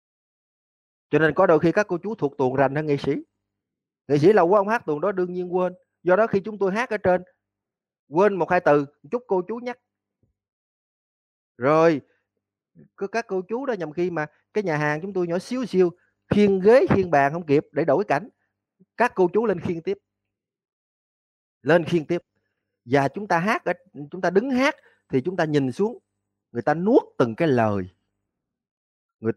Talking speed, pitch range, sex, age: 200 wpm, 130-195 Hz, male, 30-49